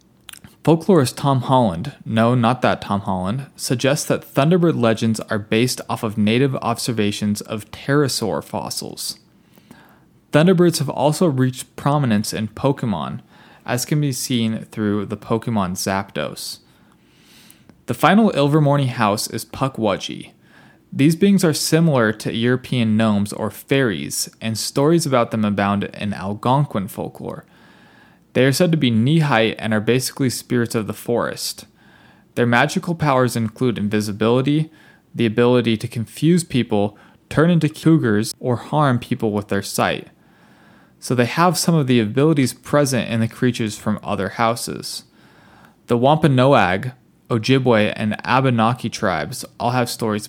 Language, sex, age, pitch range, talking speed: English, male, 20-39, 110-140 Hz, 135 wpm